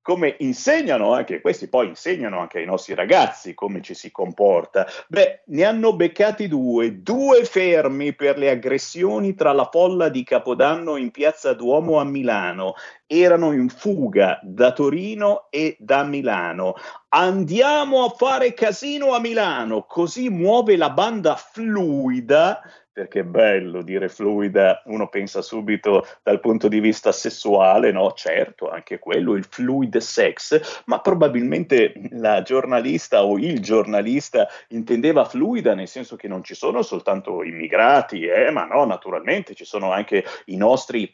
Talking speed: 145 wpm